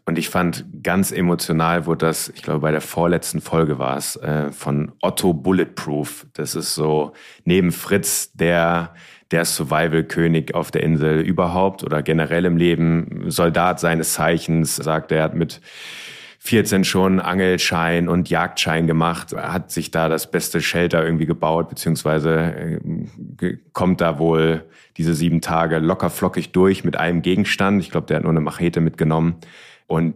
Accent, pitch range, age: German, 80-90 Hz, 30-49